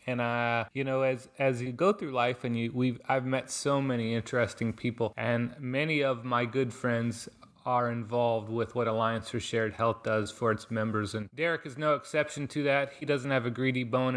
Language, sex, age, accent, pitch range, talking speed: English, male, 30-49, American, 115-130 Hz, 210 wpm